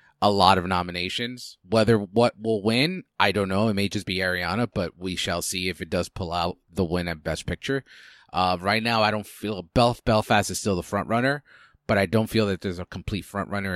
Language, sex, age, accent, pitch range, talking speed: English, male, 30-49, American, 90-110 Hz, 230 wpm